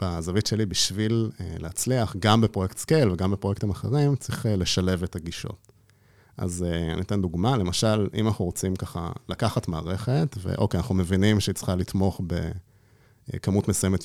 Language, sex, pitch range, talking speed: Hebrew, male, 95-120 Hz, 155 wpm